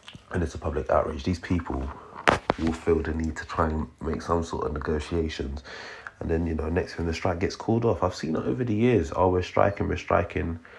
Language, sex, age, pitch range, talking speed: English, male, 30-49, 75-85 Hz, 230 wpm